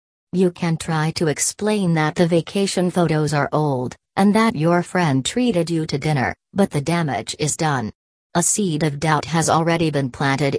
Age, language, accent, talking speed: 40-59, English, American, 180 wpm